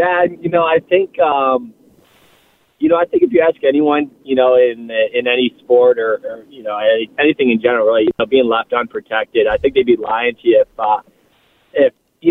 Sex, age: male, 20-39